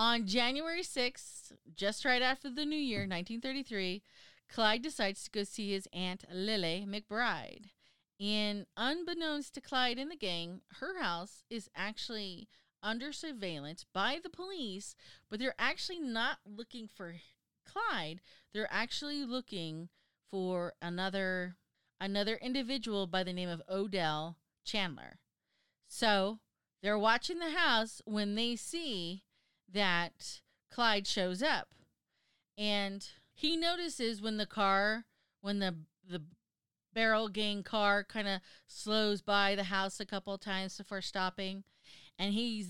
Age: 30-49